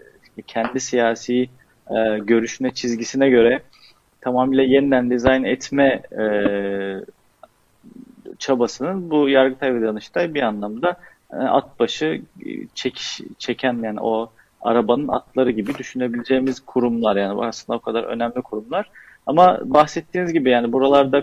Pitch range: 115-130 Hz